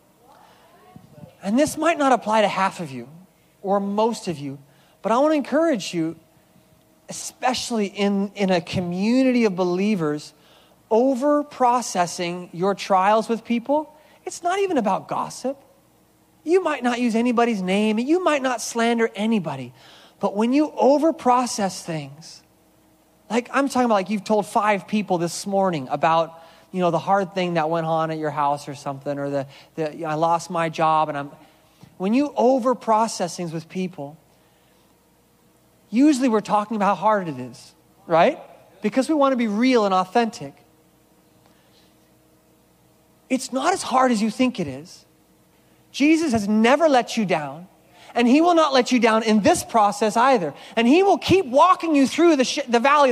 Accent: American